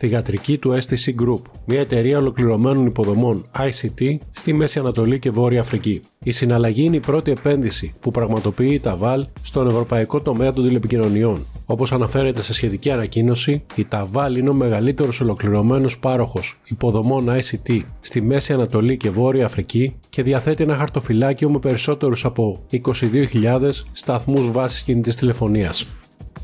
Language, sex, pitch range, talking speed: Greek, male, 115-135 Hz, 140 wpm